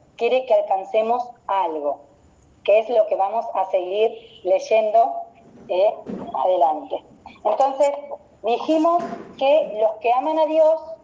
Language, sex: Spanish, female